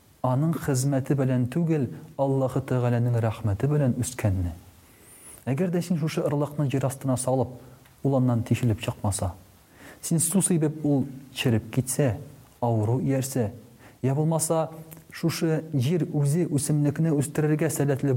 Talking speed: 115 wpm